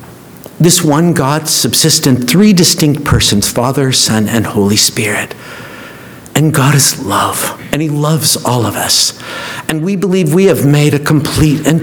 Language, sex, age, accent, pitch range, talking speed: English, male, 60-79, American, 105-140 Hz, 160 wpm